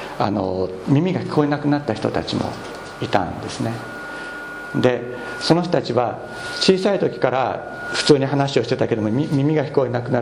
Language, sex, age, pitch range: Japanese, male, 50-69, 115-160 Hz